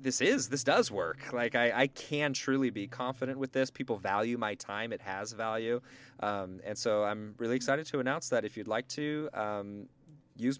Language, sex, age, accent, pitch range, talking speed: English, male, 20-39, American, 105-135 Hz, 205 wpm